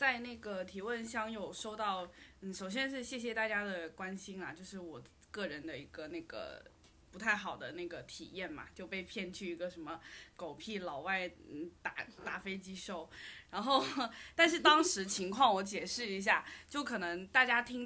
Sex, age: female, 20-39